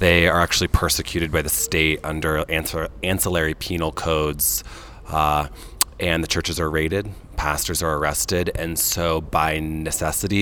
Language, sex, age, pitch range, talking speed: English, male, 30-49, 75-90 Hz, 140 wpm